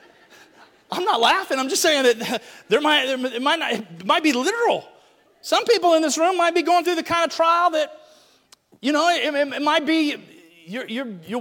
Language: English